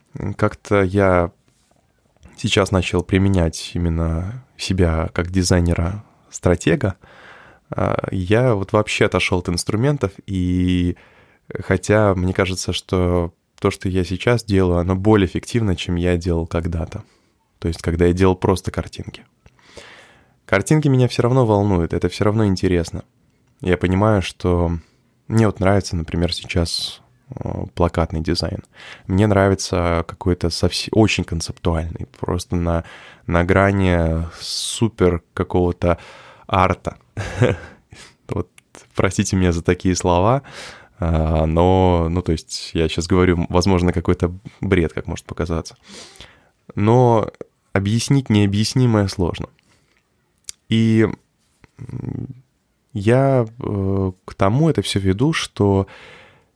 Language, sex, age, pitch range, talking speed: Russian, male, 20-39, 85-105 Hz, 110 wpm